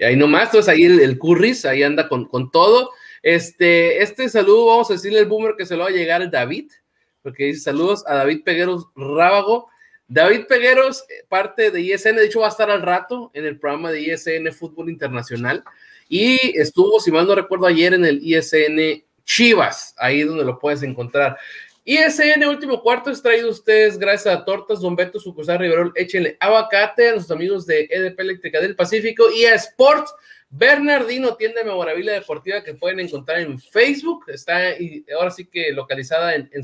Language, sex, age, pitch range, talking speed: Spanish, male, 30-49, 160-250 Hz, 190 wpm